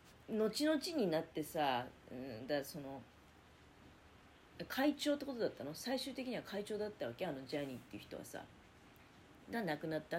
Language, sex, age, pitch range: Japanese, female, 40-59, 150-255 Hz